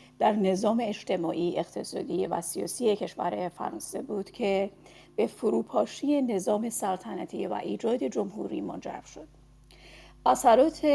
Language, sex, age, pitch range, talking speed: Persian, female, 40-59, 190-245 Hz, 110 wpm